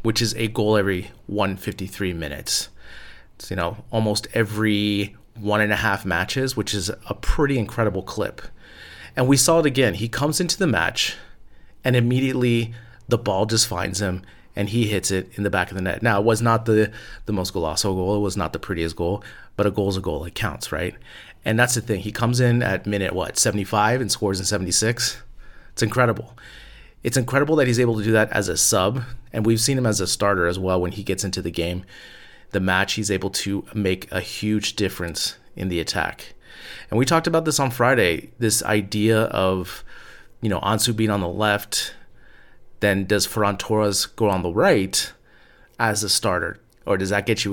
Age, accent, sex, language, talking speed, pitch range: 30-49, American, male, English, 205 wpm, 95-115 Hz